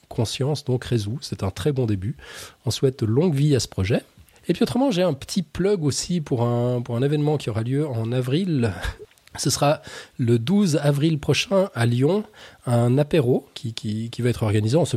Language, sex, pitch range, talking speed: French, male, 115-150 Hz, 205 wpm